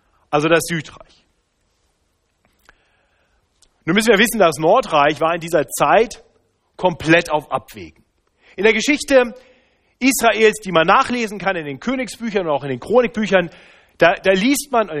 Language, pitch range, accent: German, 155-230 Hz, German